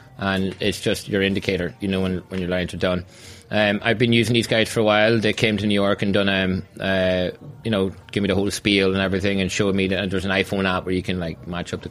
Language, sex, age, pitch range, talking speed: English, male, 20-39, 95-105 Hz, 275 wpm